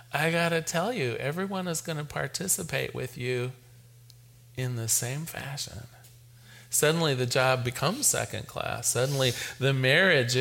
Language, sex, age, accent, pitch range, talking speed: English, male, 40-59, American, 120-160 Hz, 135 wpm